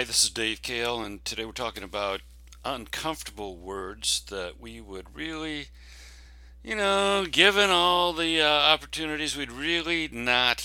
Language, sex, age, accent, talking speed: English, male, 60-79, American, 140 wpm